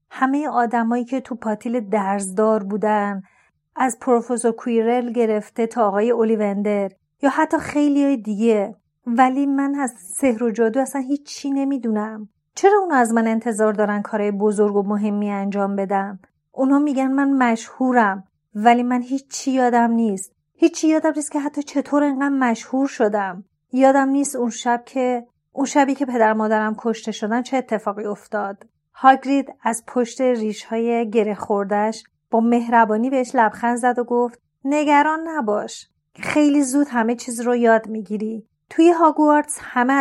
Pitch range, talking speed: 215-275 Hz, 150 wpm